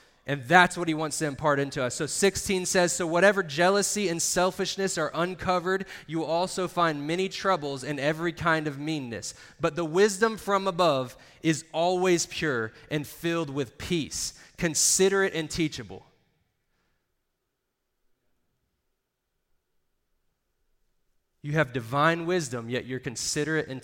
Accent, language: American, English